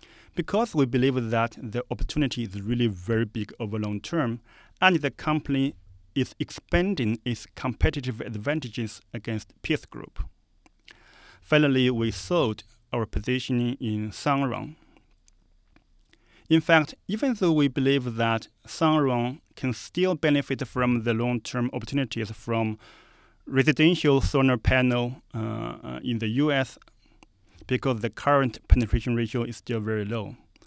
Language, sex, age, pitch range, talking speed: English, male, 40-59, 115-145 Hz, 125 wpm